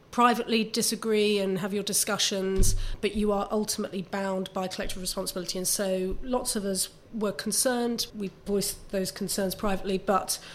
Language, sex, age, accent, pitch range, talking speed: English, female, 30-49, British, 185-210 Hz, 155 wpm